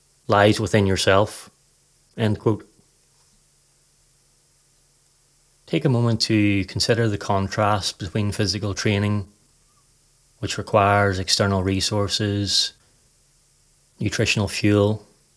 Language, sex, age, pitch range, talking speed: English, male, 30-49, 100-110 Hz, 75 wpm